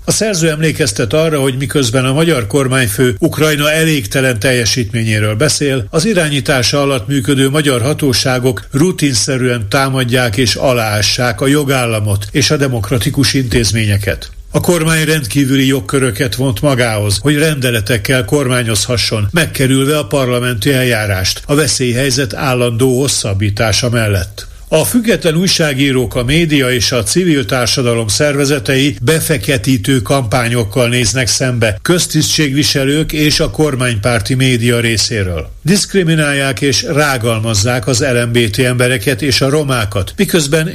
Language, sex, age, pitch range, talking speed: Hungarian, male, 60-79, 120-145 Hz, 115 wpm